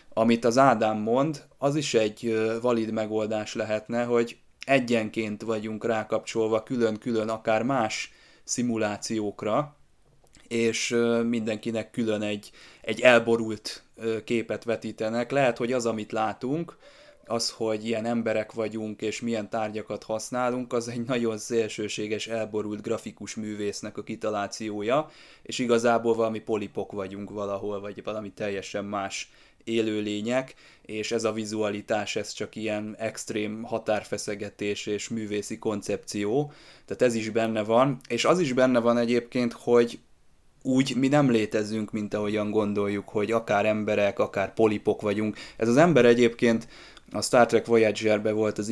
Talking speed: 130 wpm